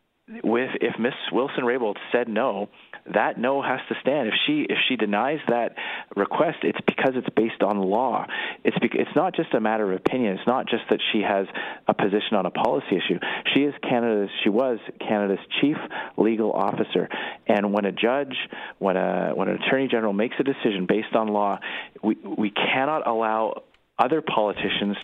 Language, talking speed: English, 185 wpm